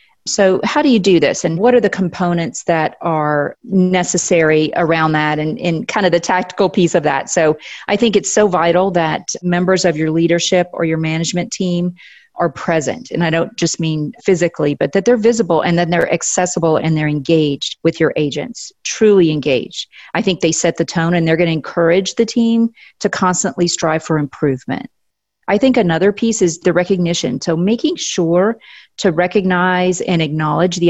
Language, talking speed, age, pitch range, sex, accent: English, 190 wpm, 40-59, 165-195 Hz, female, American